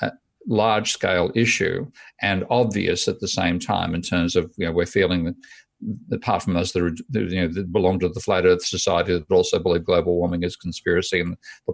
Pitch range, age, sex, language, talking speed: 90-110 Hz, 50-69, male, English, 205 wpm